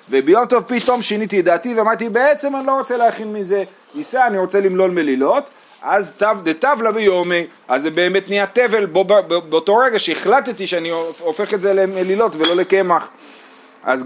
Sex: male